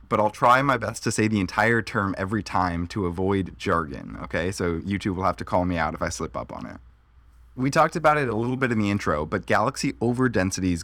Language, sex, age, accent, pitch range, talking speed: English, male, 20-39, American, 85-120 Hz, 240 wpm